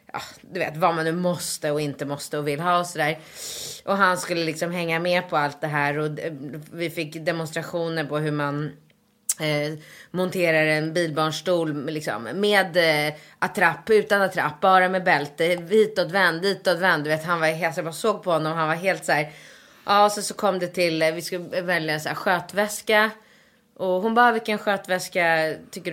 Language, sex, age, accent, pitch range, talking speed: Swedish, female, 20-39, native, 155-205 Hz, 195 wpm